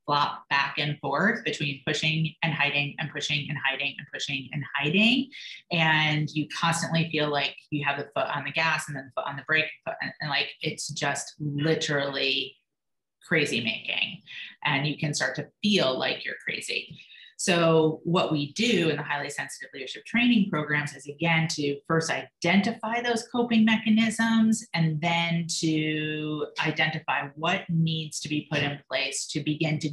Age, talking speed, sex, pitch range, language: 30-49, 170 wpm, female, 145-170 Hz, English